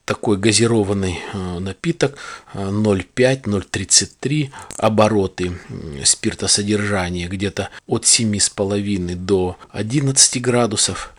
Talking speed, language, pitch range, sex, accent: 65 wpm, Russian, 95-115 Hz, male, native